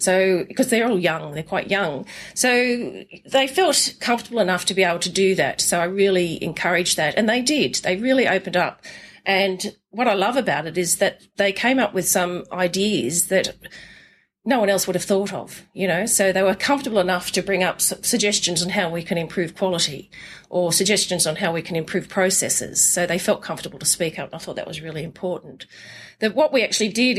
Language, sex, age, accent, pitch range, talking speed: English, female, 40-59, Australian, 170-215 Hz, 215 wpm